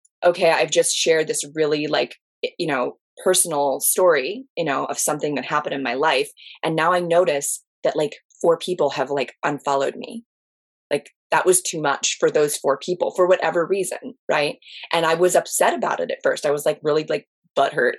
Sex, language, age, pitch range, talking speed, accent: female, English, 20-39, 160-245 Hz, 195 wpm, American